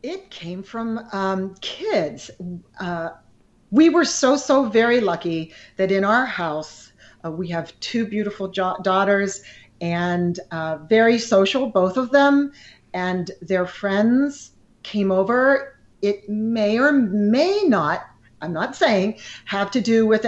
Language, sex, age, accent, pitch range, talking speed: English, female, 40-59, American, 185-260 Hz, 140 wpm